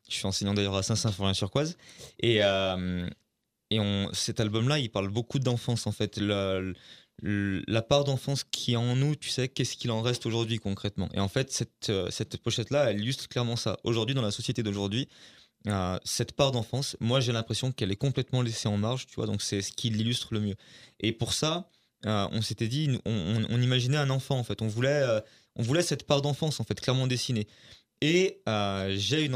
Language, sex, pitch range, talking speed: French, male, 105-130 Hz, 215 wpm